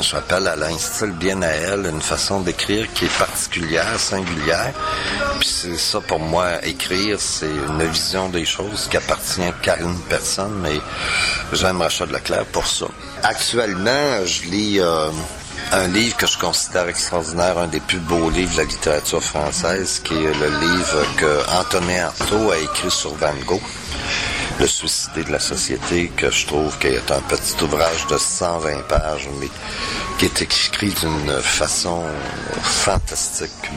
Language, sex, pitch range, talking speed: French, male, 80-95 Hz, 160 wpm